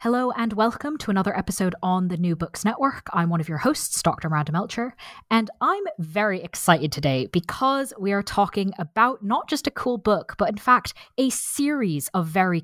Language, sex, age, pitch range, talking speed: English, female, 20-39, 175-245 Hz, 195 wpm